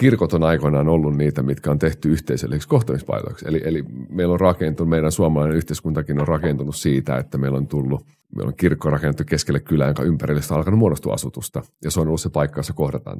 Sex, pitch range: male, 70-85 Hz